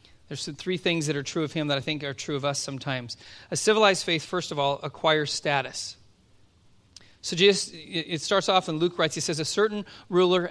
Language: English